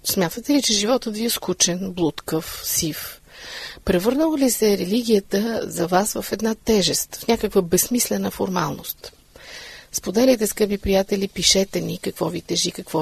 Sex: female